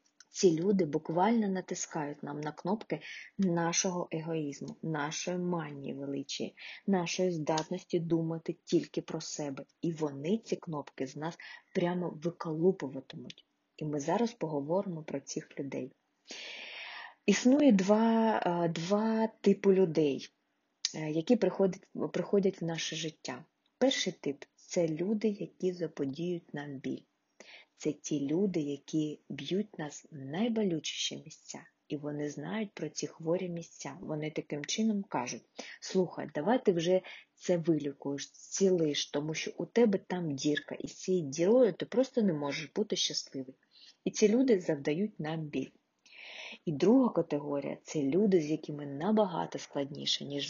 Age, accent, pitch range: 20-39, native, 150-190 Hz